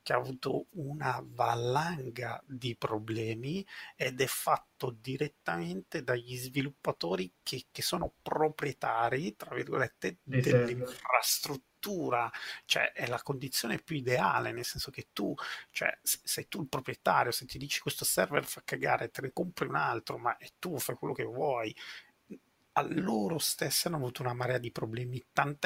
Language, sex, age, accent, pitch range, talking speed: Italian, male, 30-49, native, 120-140 Hz, 150 wpm